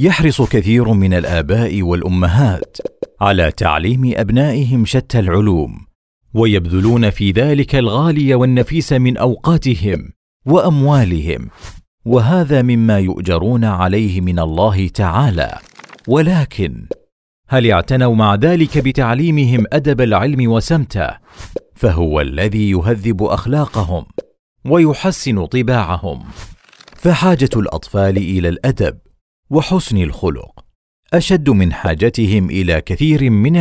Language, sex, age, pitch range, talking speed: Arabic, male, 40-59, 90-130 Hz, 95 wpm